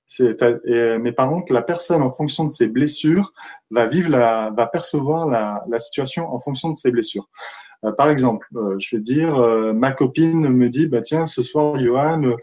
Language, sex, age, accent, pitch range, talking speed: French, male, 20-39, French, 120-155 Hz, 195 wpm